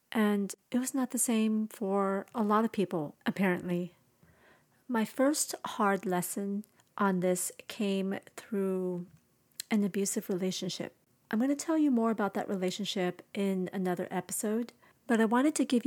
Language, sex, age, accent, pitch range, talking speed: English, female, 40-59, American, 185-225 Hz, 150 wpm